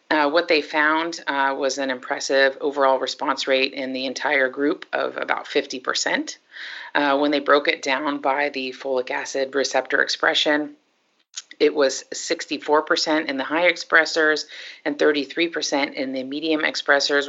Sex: female